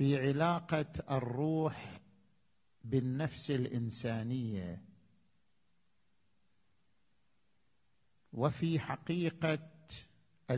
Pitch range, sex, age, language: 120-170 Hz, male, 50-69, Arabic